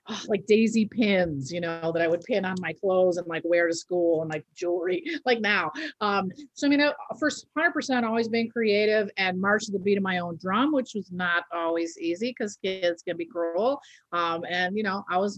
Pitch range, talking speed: 180-230 Hz, 220 wpm